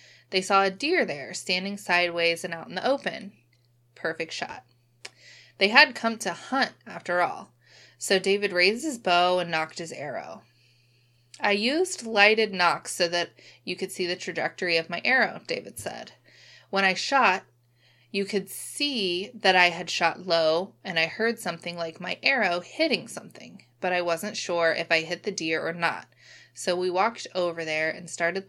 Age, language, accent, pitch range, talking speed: 20-39, English, American, 160-195 Hz, 175 wpm